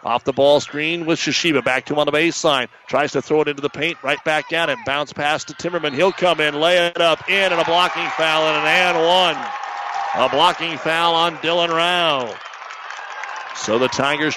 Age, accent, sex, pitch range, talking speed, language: 50-69, American, male, 150-175 Hz, 215 wpm, English